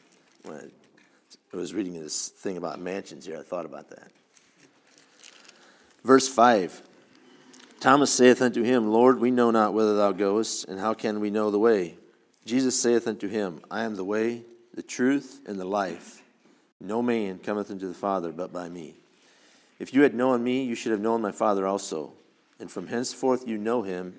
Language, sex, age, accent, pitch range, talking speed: English, male, 50-69, American, 100-125 Hz, 180 wpm